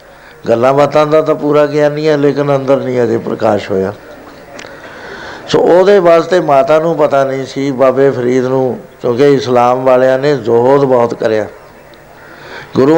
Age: 60-79